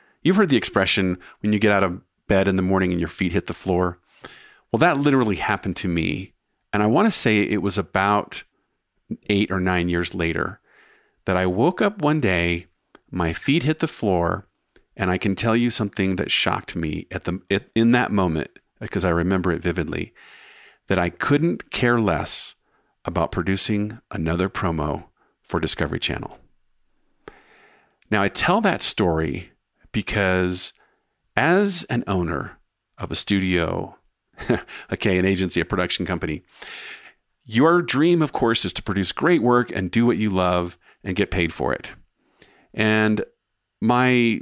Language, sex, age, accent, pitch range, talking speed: English, male, 50-69, American, 90-115 Hz, 160 wpm